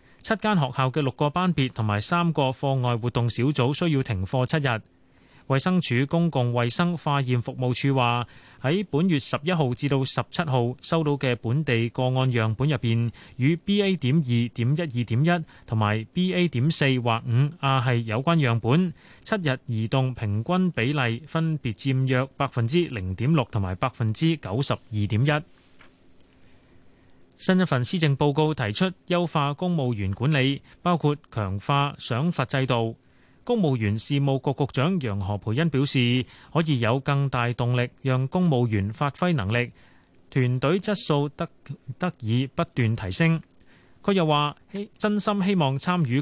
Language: Chinese